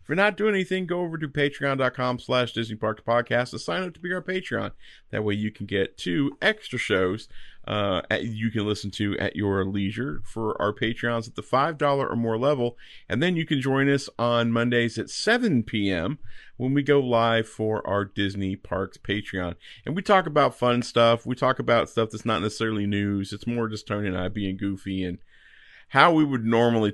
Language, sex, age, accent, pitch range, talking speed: English, male, 40-59, American, 105-130 Hz, 205 wpm